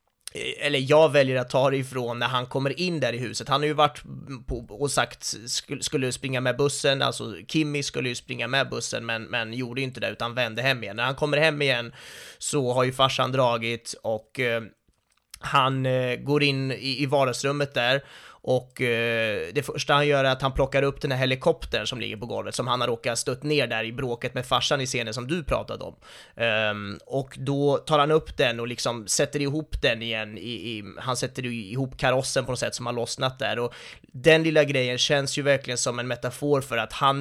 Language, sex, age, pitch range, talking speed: Swedish, male, 30-49, 120-140 Hz, 215 wpm